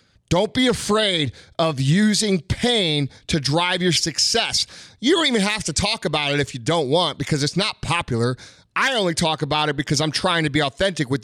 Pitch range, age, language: 135-175 Hz, 30-49, English